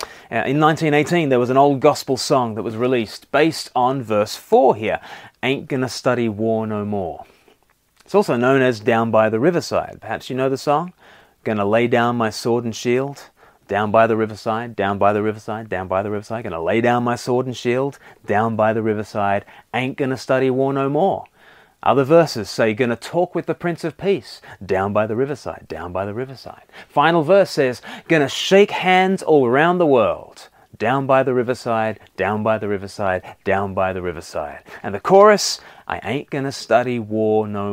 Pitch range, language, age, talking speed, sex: 110-145 Hz, English, 30-49, 195 wpm, male